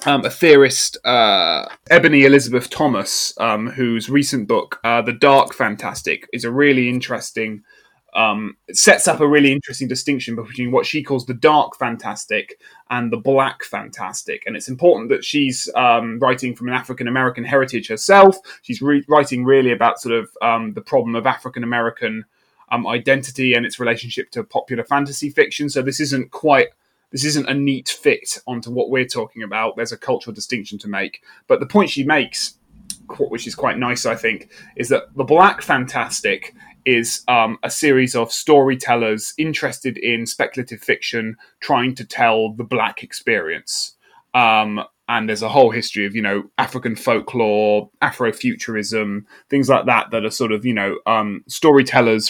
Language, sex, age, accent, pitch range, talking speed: English, male, 20-39, British, 115-140 Hz, 165 wpm